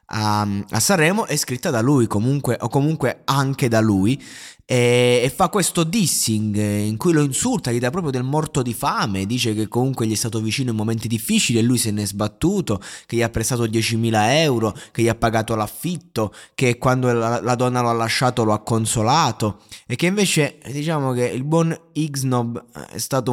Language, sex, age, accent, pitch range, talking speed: Italian, male, 20-39, native, 110-155 Hz, 195 wpm